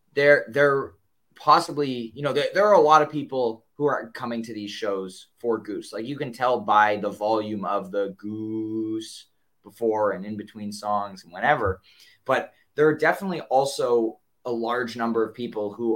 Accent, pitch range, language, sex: American, 105-130 Hz, English, male